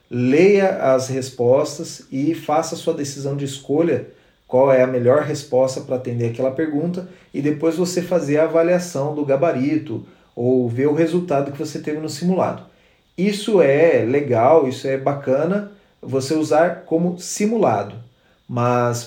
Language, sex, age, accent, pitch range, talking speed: Portuguese, male, 30-49, Brazilian, 130-165 Hz, 150 wpm